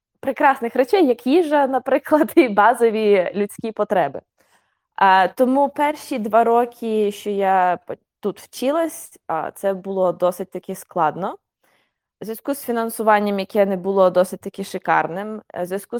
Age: 20-39